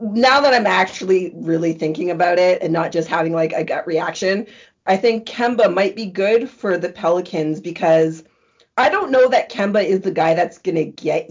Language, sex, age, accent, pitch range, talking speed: English, female, 30-49, American, 160-195 Hz, 195 wpm